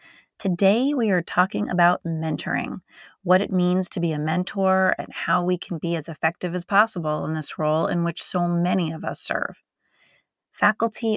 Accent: American